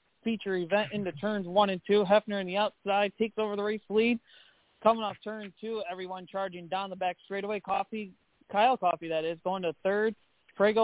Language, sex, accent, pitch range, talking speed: English, male, American, 190-220 Hz, 195 wpm